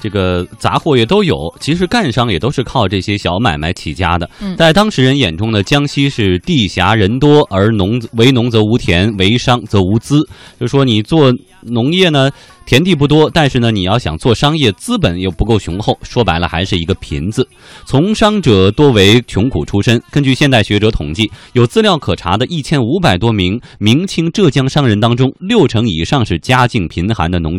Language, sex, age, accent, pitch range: Chinese, male, 20-39, native, 100-150 Hz